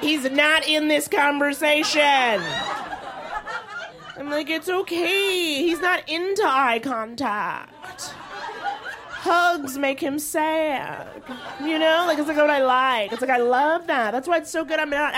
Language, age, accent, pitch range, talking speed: English, 30-49, American, 220-325 Hz, 150 wpm